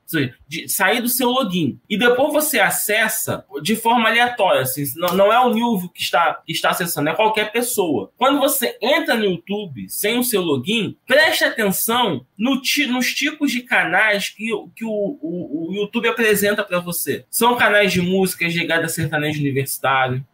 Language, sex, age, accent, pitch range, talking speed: Portuguese, male, 20-39, Brazilian, 180-240 Hz, 175 wpm